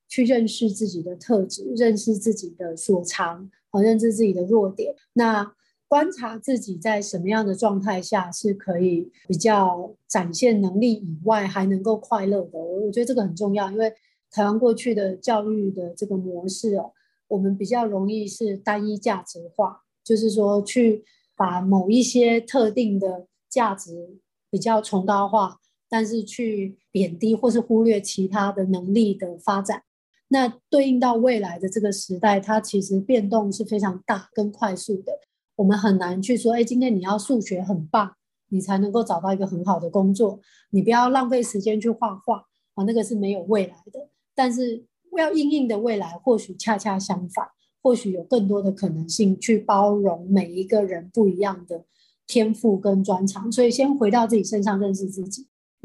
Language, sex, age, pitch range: Chinese, female, 30-49, 195-230 Hz